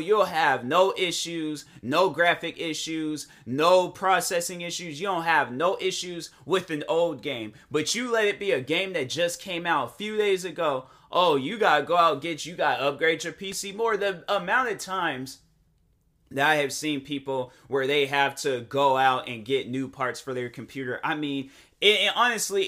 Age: 30-49